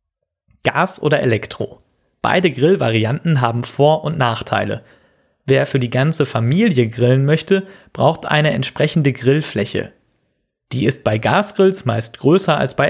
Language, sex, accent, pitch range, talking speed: German, male, German, 115-160 Hz, 130 wpm